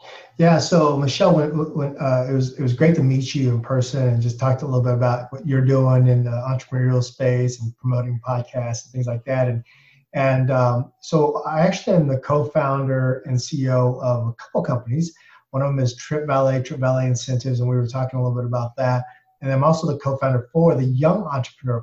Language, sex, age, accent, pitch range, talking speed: English, male, 30-49, American, 120-140 Hz, 215 wpm